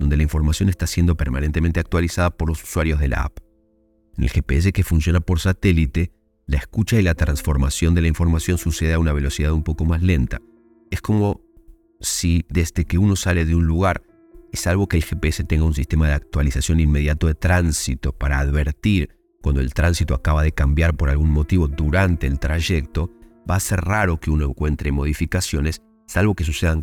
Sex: male